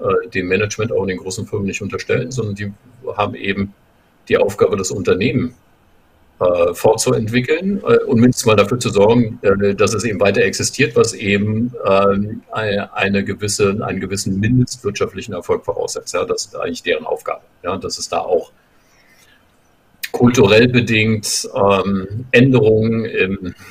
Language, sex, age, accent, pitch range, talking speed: German, male, 50-69, German, 95-155 Hz, 140 wpm